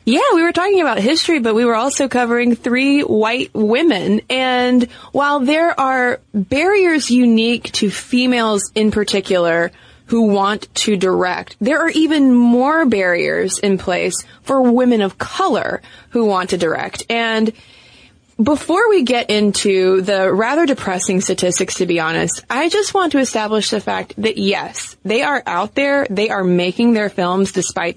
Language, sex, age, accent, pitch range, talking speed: English, female, 20-39, American, 195-250 Hz, 160 wpm